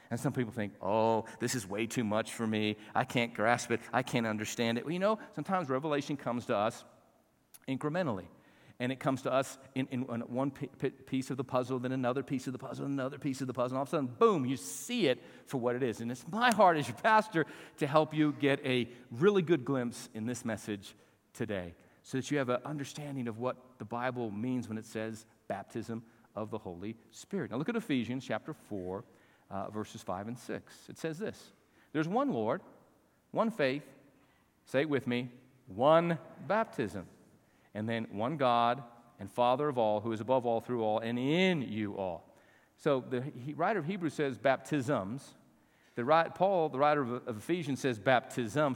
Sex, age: male, 50-69